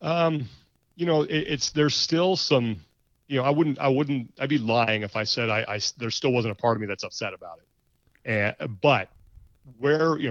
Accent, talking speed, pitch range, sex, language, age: American, 215 wpm, 105-125 Hz, male, English, 40-59